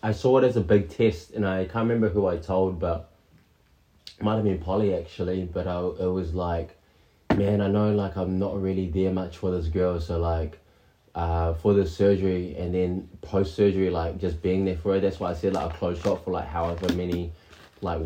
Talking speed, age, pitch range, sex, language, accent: 220 wpm, 20-39, 85-100 Hz, male, English, Australian